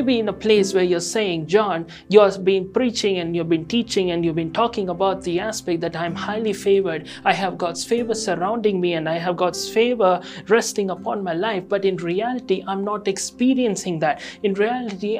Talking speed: 200 wpm